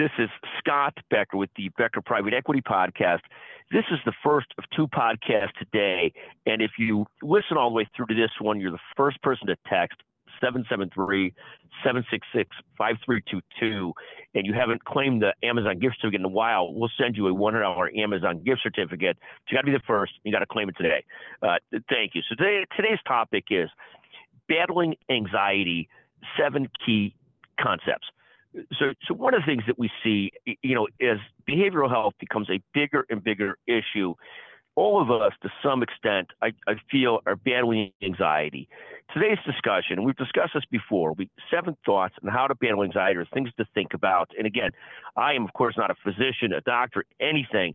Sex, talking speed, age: male, 180 wpm, 50-69